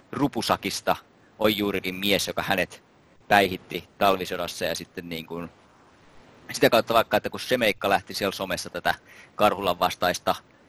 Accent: Finnish